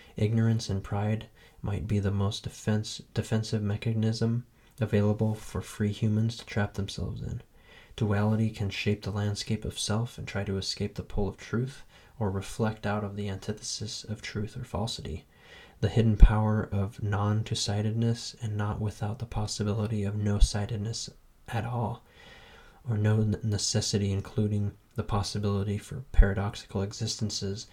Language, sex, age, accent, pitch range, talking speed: English, male, 20-39, American, 100-110 Hz, 145 wpm